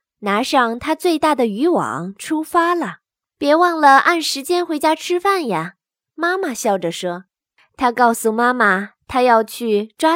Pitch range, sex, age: 225-320 Hz, female, 20-39